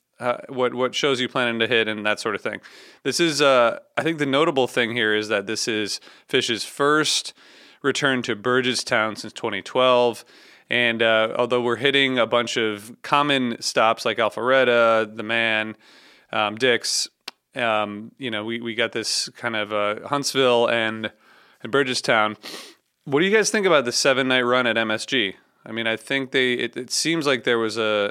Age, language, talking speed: 30-49, English, 190 wpm